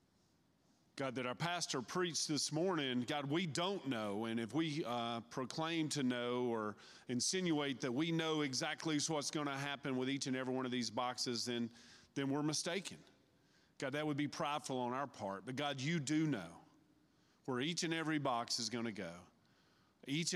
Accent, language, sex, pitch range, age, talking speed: American, English, male, 120-150 Hz, 40-59, 185 wpm